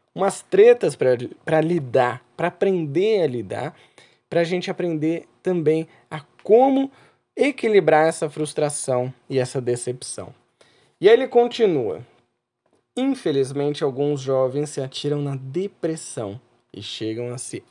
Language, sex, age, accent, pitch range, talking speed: Portuguese, male, 20-39, Brazilian, 130-185 Hz, 120 wpm